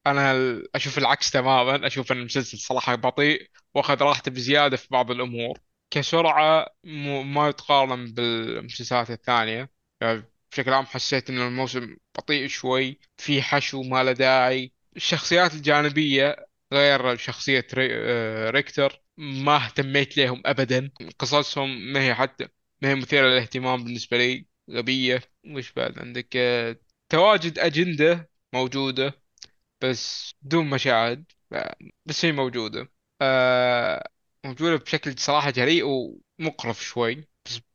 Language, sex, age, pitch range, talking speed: Arabic, male, 20-39, 125-145 Hz, 115 wpm